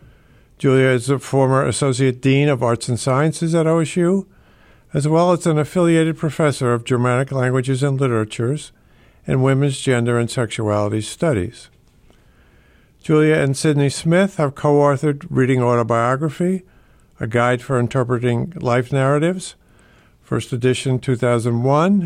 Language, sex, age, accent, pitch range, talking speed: English, male, 50-69, American, 120-145 Hz, 130 wpm